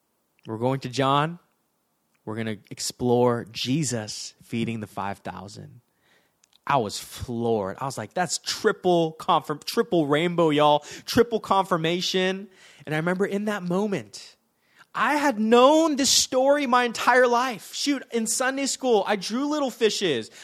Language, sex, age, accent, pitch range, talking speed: English, male, 20-39, American, 145-235 Hz, 140 wpm